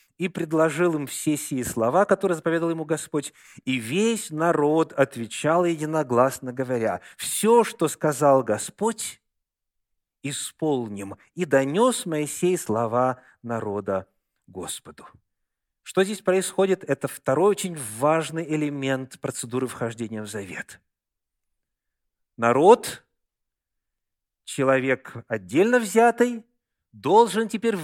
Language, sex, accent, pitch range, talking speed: Russian, male, native, 135-195 Hz, 95 wpm